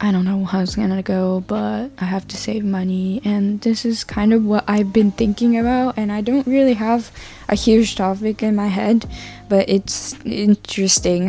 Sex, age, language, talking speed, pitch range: female, 10-29, English, 195 wpm, 185-210 Hz